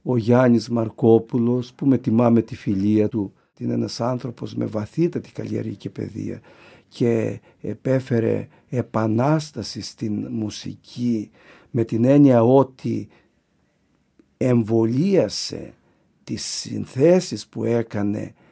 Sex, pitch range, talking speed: male, 115-145 Hz, 100 wpm